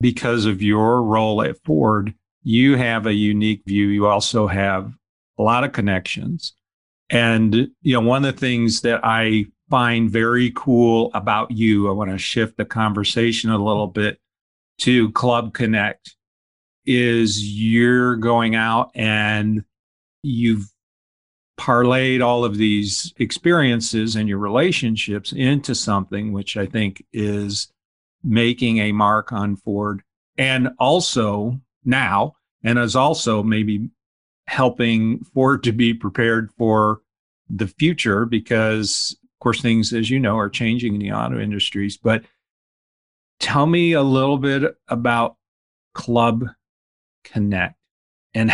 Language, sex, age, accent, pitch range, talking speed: English, male, 50-69, American, 105-120 Hz, 130 wpm